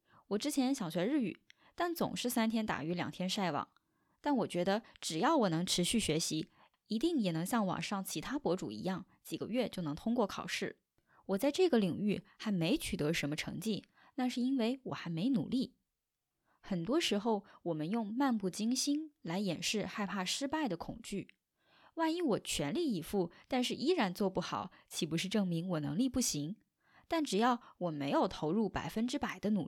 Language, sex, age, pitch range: Chinese, female, 10-29, 180-265 Hz